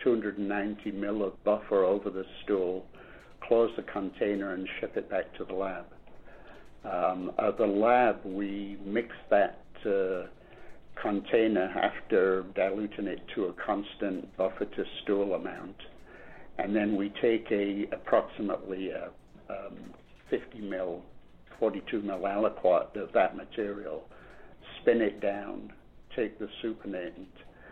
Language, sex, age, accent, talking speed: English, male, 60-79, American, 125 wpm